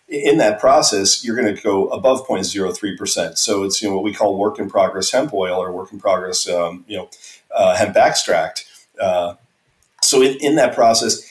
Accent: American